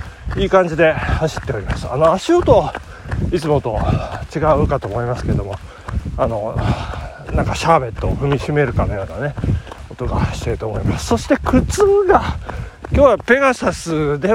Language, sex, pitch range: Japanese, male, 120-200 Hz